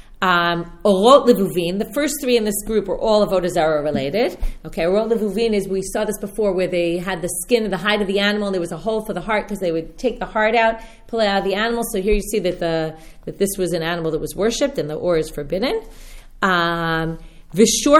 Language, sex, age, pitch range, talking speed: English, female, 40-59, 180-230 Hz, 245 wpm